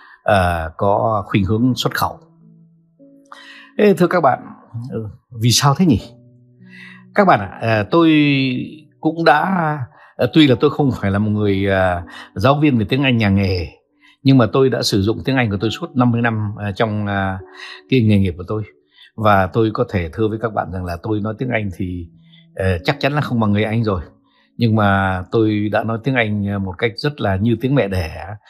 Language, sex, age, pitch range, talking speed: Vietnamese, male, 60-79, 100-140 Hz, 210 wpm